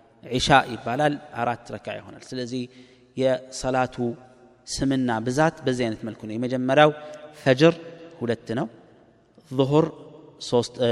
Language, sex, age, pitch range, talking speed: Amharic, male, 30-49, 115-140 Hz, 90 wpm